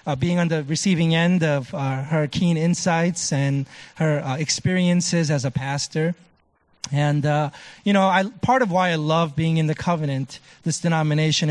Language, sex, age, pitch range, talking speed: English, male, 30-49, 150-175 Hz, 175 wpm